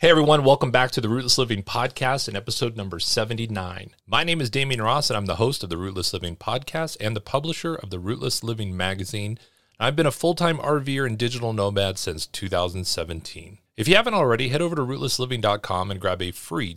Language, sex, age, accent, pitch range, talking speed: English, male, 30-49, American, 100-145 Hz, 205 wpm